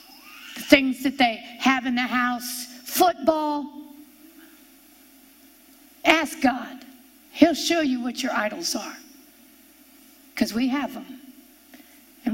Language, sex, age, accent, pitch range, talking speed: English, female, 50-69, American, 275-335 Hz, 105 wpm